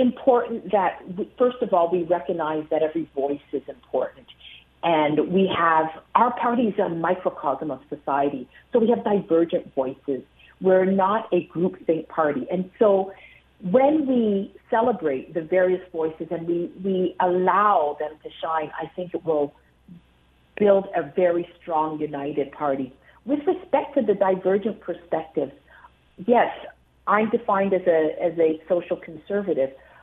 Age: 50-69